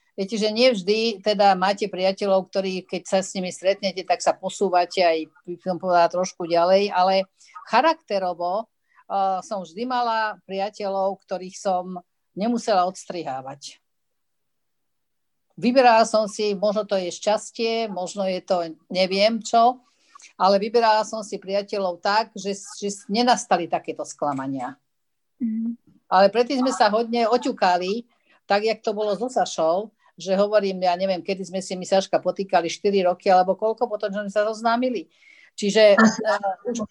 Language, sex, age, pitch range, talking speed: Slovak, female, 50-69, 185-220 Hz, 135 wpm